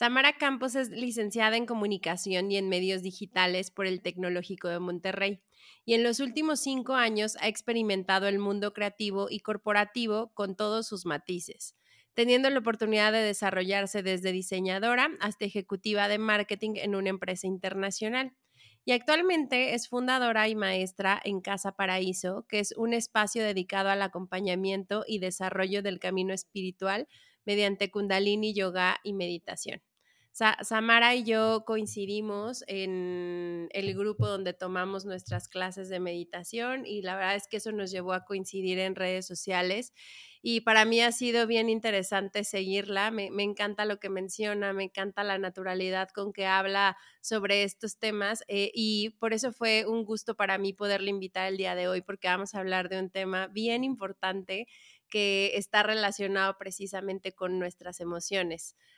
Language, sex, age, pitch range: Spanish, female, 30-49, 190-220 Hz